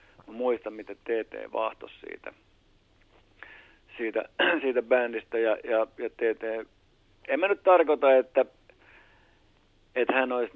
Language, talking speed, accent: Finnish, 115 wpm, native